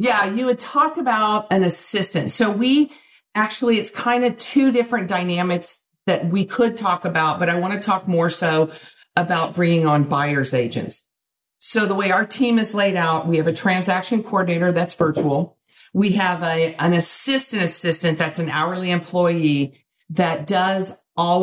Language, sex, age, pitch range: English, female, 50-69, 155-195 Hz